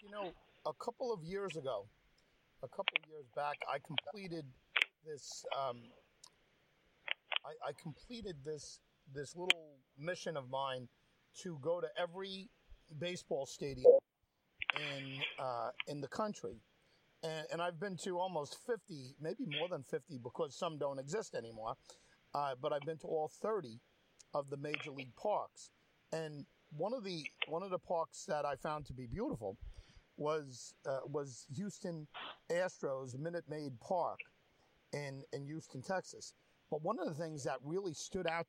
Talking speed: 155 wpm